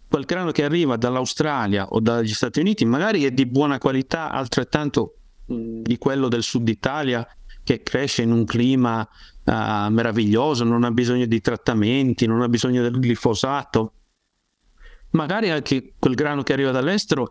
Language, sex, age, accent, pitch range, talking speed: Italian, male, 50-69, native, 115-150 Hz, 155 wpm